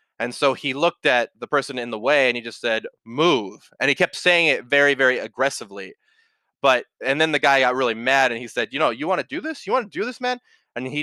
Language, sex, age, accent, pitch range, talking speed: English, male, 20-39, American, 110-155 Hz, 265 wpm